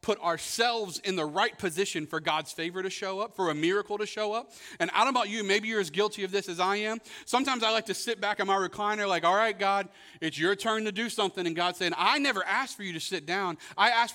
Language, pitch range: English, 165-235 Hz